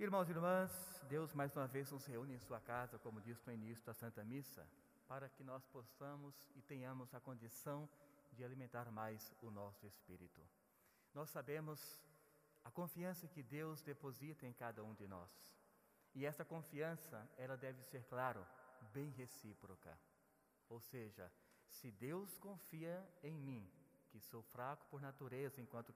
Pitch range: 120-165 Hz